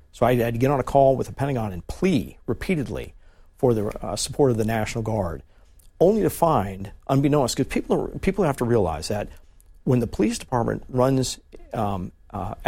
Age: 50-69